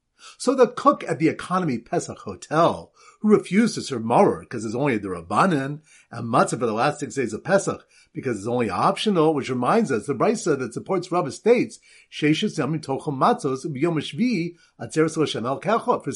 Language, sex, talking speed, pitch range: English, male, 150 wpm, 140-200 Hz